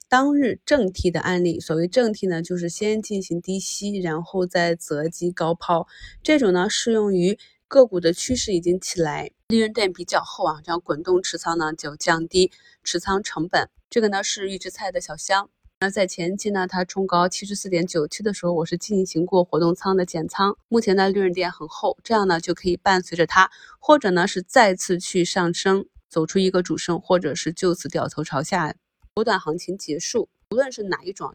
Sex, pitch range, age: female, 170-205 Hz, 20-39